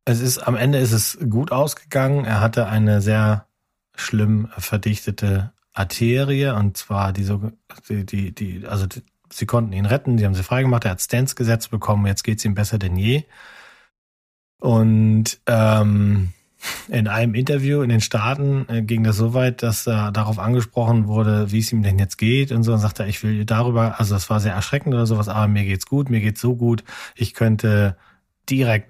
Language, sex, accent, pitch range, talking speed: German, male, German, 100-120 Hz, 195 wpm